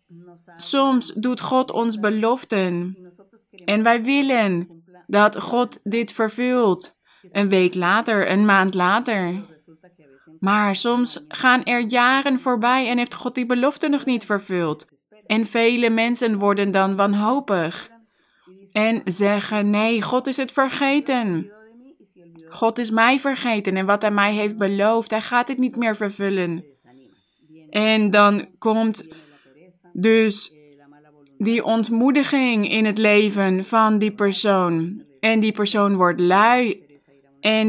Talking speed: 125 wpm